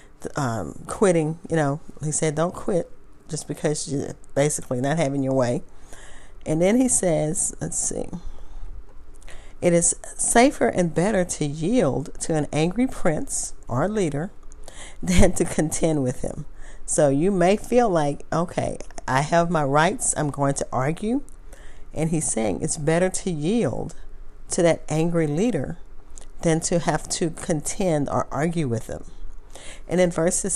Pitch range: 140-180 Hz